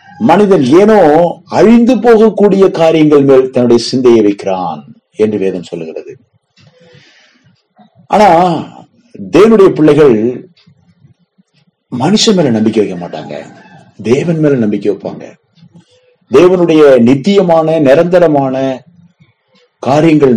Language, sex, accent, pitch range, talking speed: Tamil, male, native, 115-170 Hz, 80 wpm